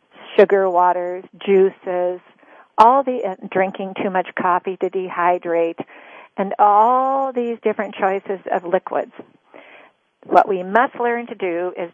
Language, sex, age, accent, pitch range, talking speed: English, female, 50-69, American, 190-215 Hz, 130 wpm